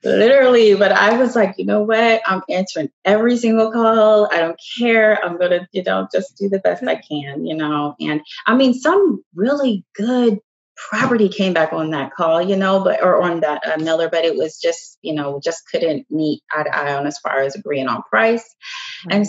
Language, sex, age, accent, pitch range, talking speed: English, female, 30-49, American, 160-220 Hz, 215 wpm